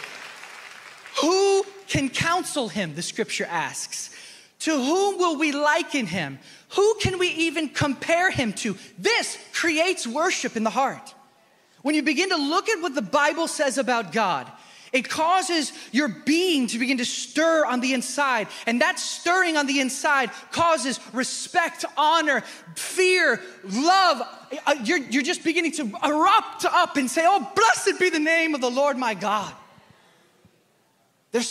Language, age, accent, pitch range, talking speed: English, 20-39, American, 260-360 Hz, 150 wpm